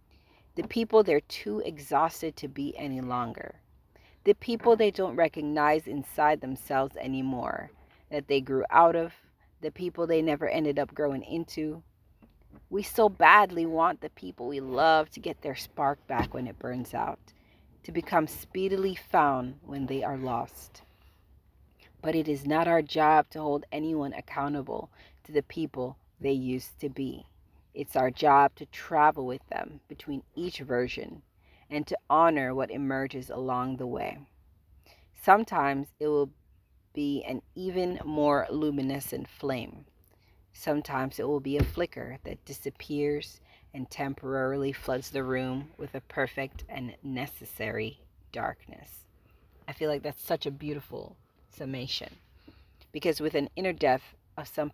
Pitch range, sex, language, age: 130-155 Hz, female, English, 40-59